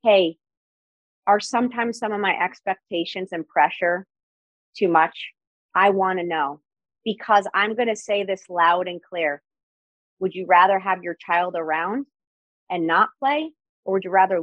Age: 30-49